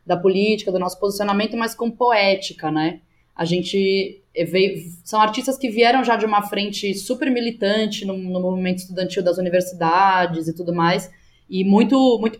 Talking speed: 165 wpm